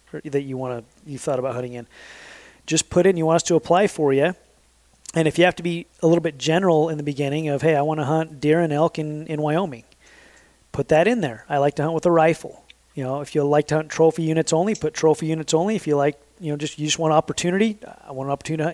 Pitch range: 140-165 Hz